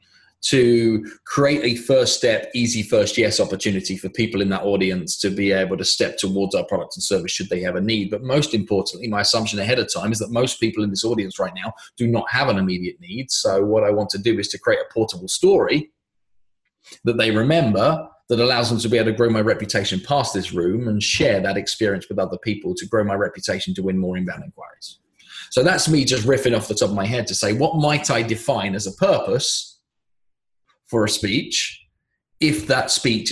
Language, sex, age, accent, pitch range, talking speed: English, male, 20-39, British, 100-130 Hz, 220 wpm